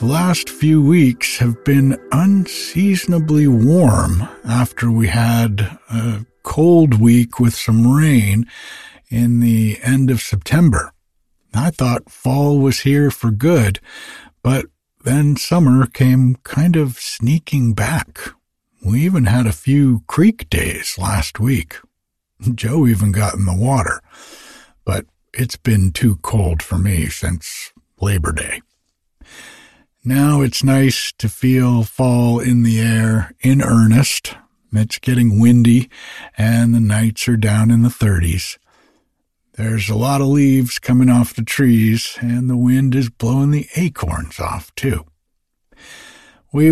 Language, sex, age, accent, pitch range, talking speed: English, male, 60-79, American, 110-135 Hz, 130 wpm